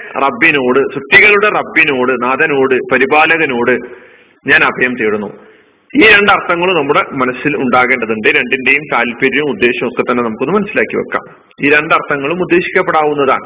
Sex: male